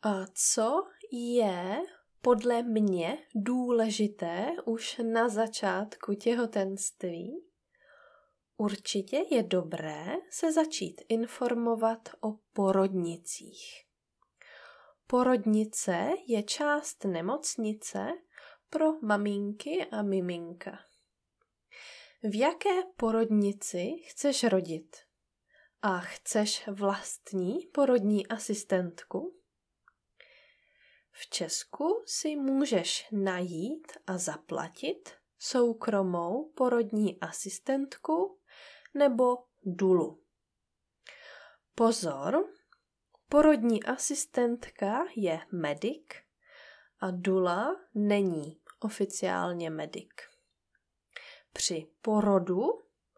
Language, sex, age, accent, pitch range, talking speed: Czech, female, 20-39, native, 190-270 Hz, 70 wpm